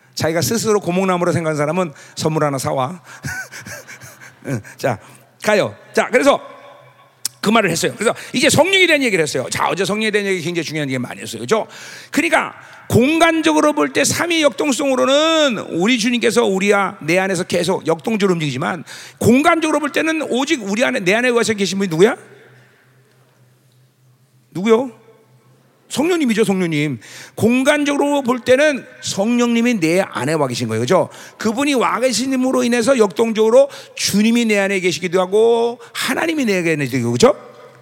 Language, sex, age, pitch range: Korean, male, 40-59, 170-285 Hz